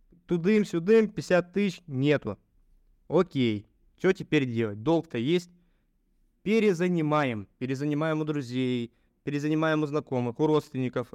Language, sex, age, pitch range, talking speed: Russian, male, 20-39, 130-175 Hz, 100 wpm